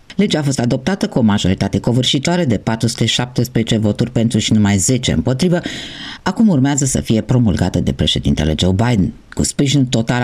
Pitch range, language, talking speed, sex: 105-145 Hz, Romanian, 165 wpm, female